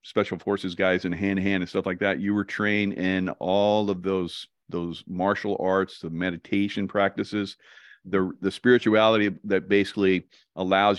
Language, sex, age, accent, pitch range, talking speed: English, male, 40-59, American, 85-105 Hz, 155 wpm